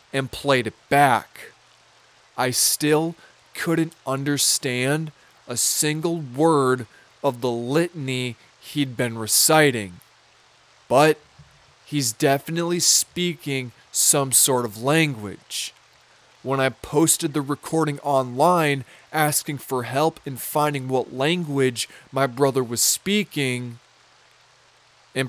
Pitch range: 120-150 Hz